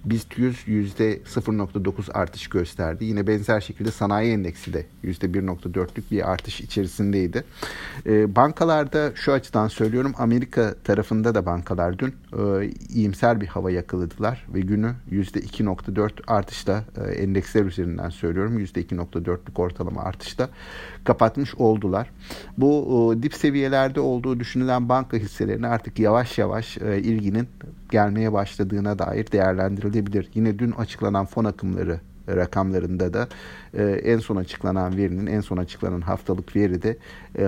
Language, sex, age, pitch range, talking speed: Turkish, male, 50-69, 95-115 Hz, 125 wpm